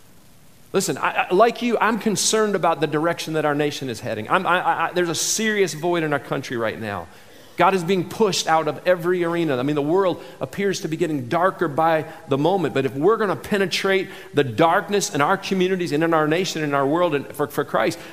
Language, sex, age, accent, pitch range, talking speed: English, male, 40-59, American, 125-165 Hz, 235 wpm